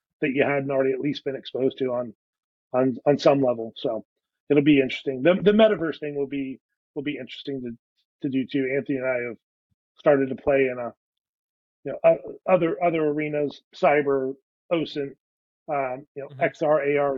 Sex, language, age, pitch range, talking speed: male, English, 40-59, 135-150 Hz, 180 wpm